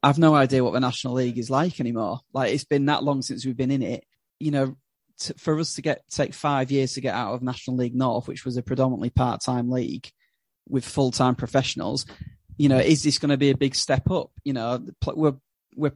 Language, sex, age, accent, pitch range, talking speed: English, male, 30-49, British, 130-145 Hz, 235 wpm